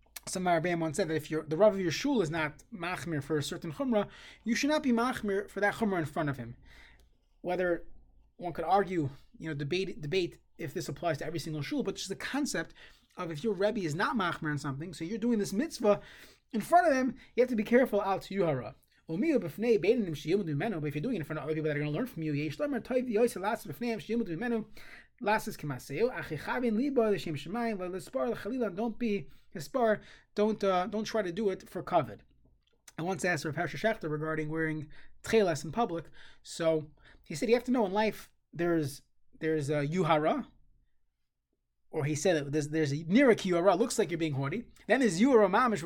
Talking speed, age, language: 185 wpm, 20-39, English